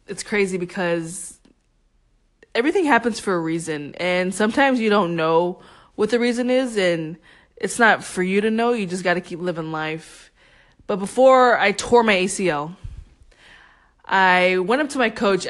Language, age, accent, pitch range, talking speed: English, 20-39, American, 170-200 Hz, 165 wpm